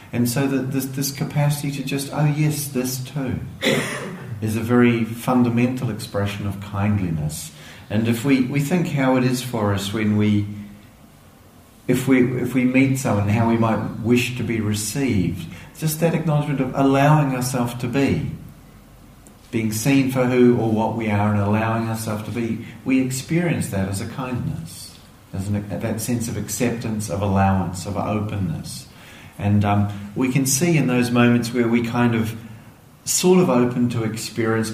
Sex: male